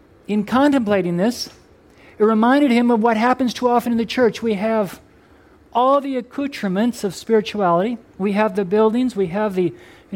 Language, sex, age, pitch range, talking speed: English, male, 50-69, 180-220 Hz, 170 wpm